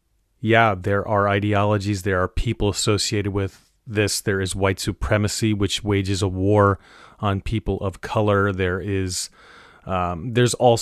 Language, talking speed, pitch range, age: English, 150 wpm, 90-110 Hz, 30-49